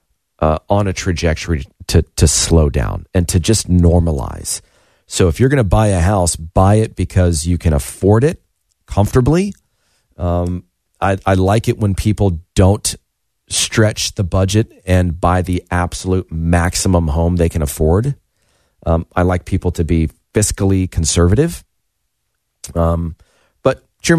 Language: English